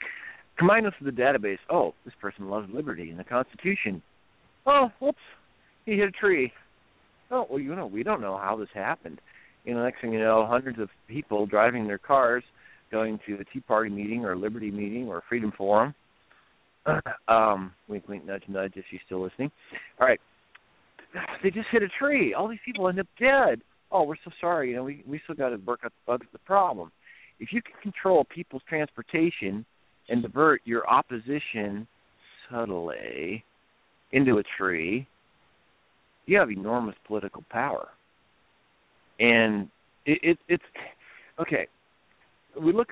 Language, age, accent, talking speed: English, 50-69, American, 165 wpm